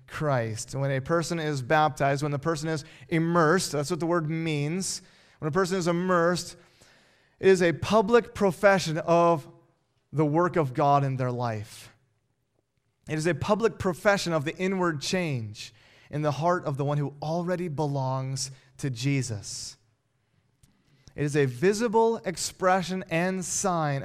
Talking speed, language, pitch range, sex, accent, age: 150 wpm, English, 135-180 Hz, male, American, 30-49